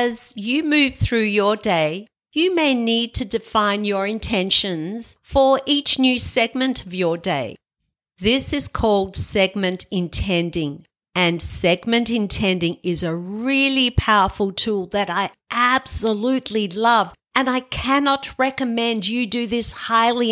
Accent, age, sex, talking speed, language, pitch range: Australian, 50-69, female, 135 wpm, English, 195-255 Hz